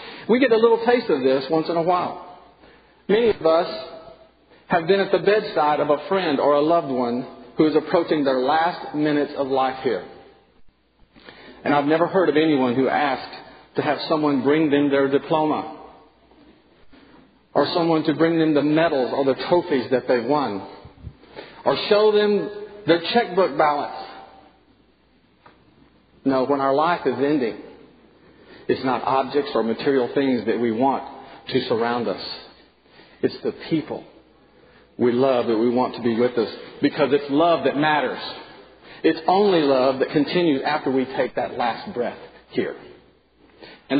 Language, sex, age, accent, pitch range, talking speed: English, male, 50-69, American, 140-185 Hz, 160 wpm